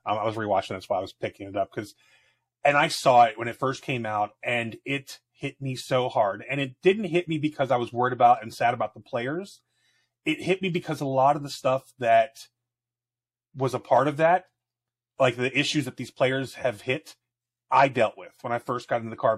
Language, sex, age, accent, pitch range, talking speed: English, male, 30-49, American, 120-145 Hz, 230 wpm